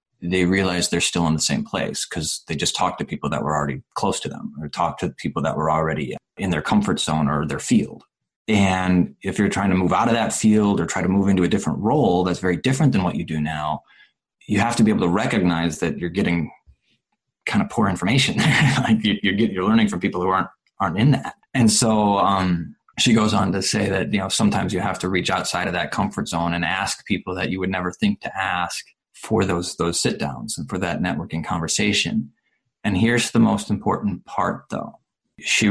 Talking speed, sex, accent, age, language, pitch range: 225 wpm, male, American, 20-39, English, 90-110 Hz